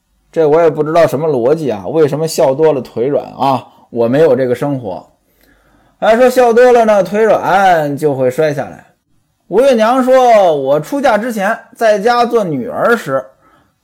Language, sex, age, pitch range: Chinese, male, 20-39, 135-220 Hz